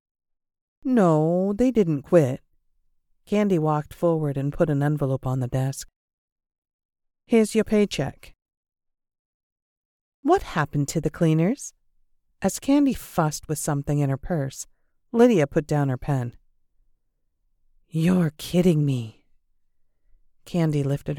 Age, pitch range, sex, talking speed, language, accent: 50-69, 135-220 Hz, female, 115 wpm, English, American